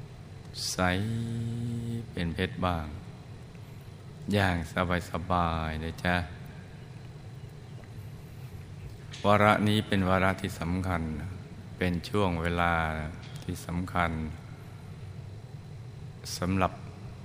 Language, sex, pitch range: Thai, male, 90-125 Hz